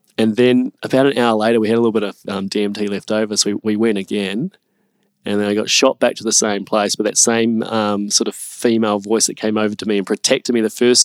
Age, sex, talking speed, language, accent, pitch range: 20-39, male, 265 wpm, English, Australian, 105-125 Hz